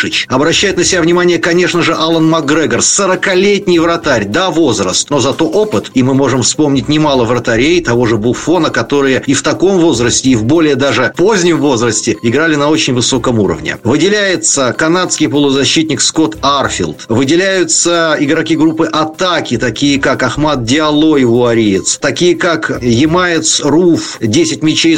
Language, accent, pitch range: Russian, native, 135-175 Hz